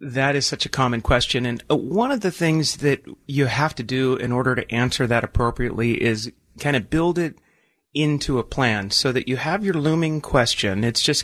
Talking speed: 210 wpm